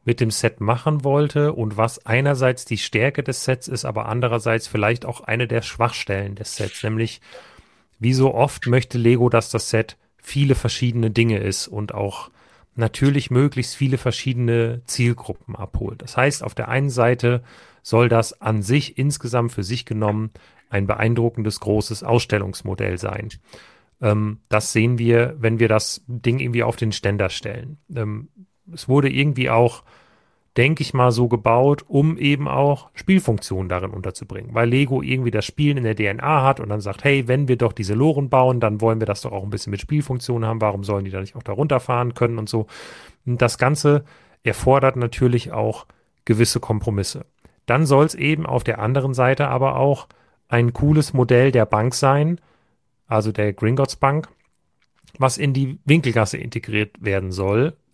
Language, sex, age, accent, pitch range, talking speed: German, male, 40-59, German, 110-135 Hz, 175 wpm